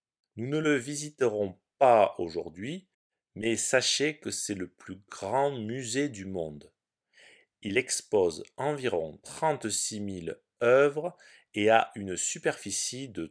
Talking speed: 120 wpm